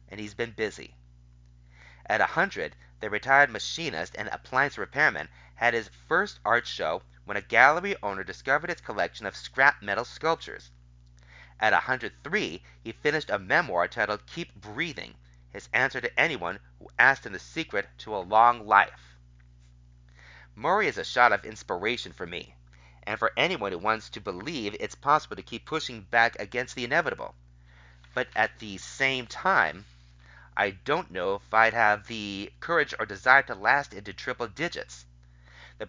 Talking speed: 160 wpm